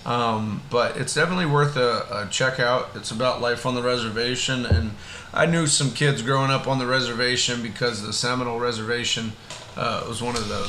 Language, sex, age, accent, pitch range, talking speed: English, male, 30-49, American, 115-130 Hz, 190 wpm